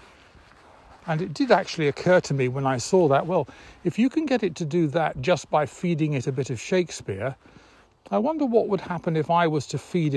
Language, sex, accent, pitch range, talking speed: English, male, British, 135-180 Hz, 225 wpm